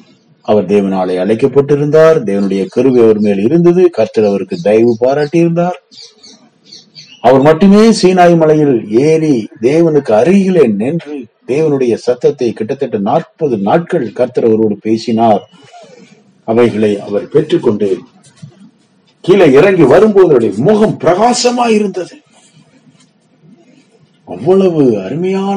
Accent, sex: Indian, male